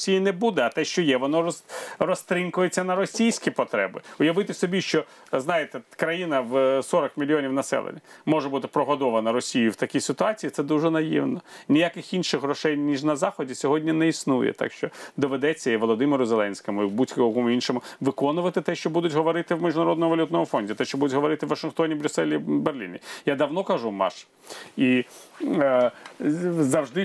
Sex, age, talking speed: male, 40-59, 160 wpm